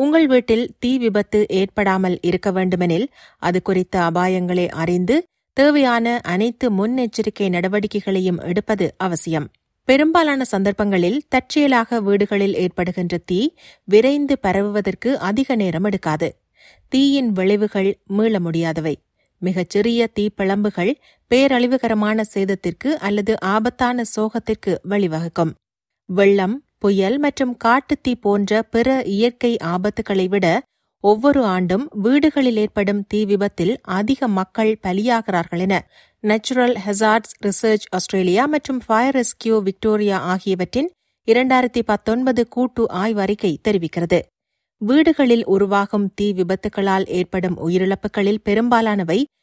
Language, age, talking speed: Tamil, 30-49, 95 wpm